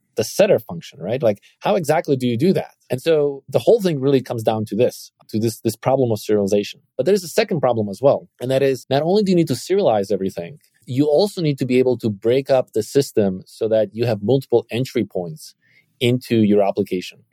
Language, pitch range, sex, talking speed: English, 115-145 Hz, male, 230 wpm